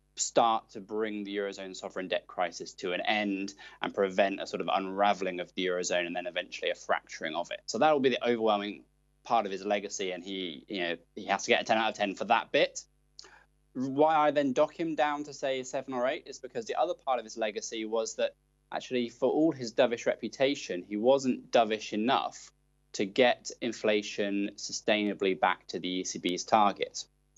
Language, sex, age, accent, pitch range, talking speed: English, male, 20-39, British, 95-125 Hz, 205 wpm